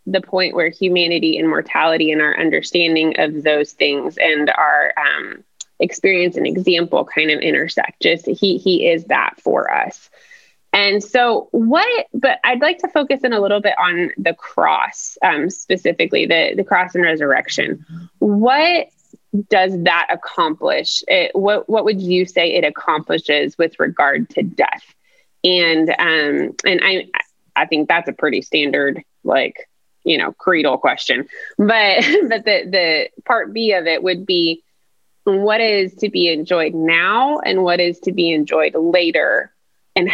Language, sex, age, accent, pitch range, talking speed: English, female, 20-39, American, 170-220 Hz, 155 wpm